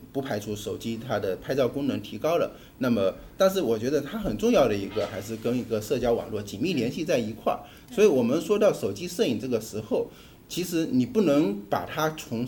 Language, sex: Chinese, male